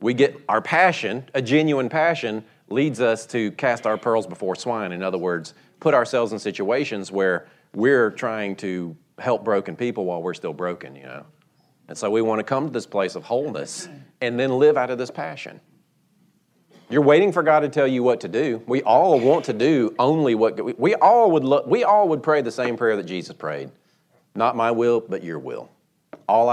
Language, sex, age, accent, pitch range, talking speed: English, male, 40-59, American, 110-150 Hz, 210 wpm